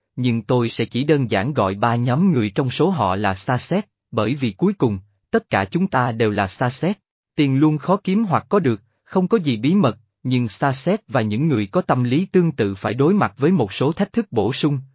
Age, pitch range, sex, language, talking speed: 20-39, 110-170 Hz, male, Vietnamese, 245 wpm